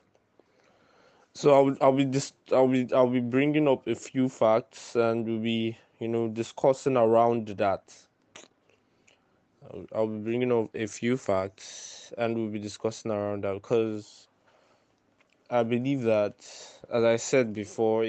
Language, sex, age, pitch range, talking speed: English, male, 20-39, 110-130 Hz, 150 wpm